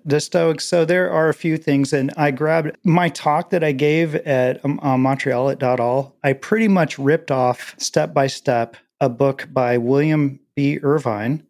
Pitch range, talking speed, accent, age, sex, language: 135-160 Hz, 190 wpm, American, 40-59, male, English